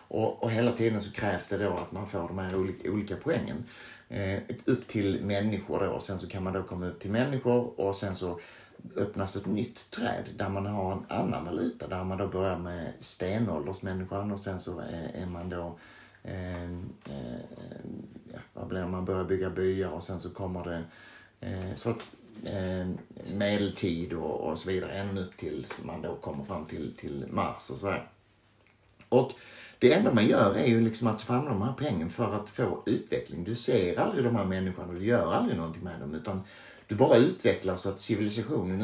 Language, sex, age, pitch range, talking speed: Swedish, male, 30-49, 95-115 Hz, 200 wpm